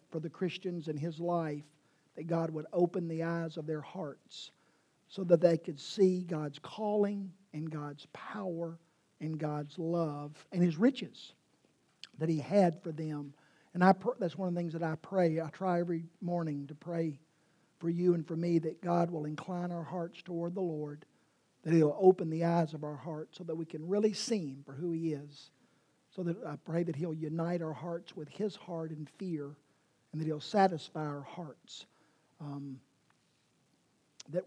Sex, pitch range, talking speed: male, 150-175 Hz, 185 wpm